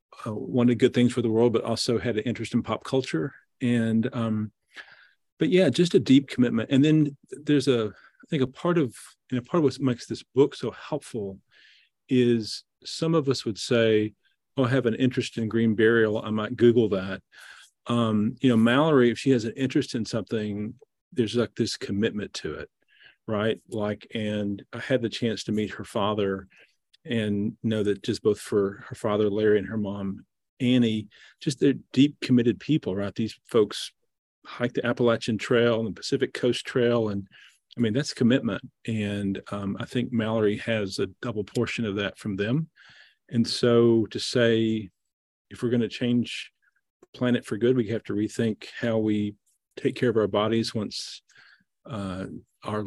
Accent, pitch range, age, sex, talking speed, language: American, 105-125 Hz, 40-59, male, 185 wpm, English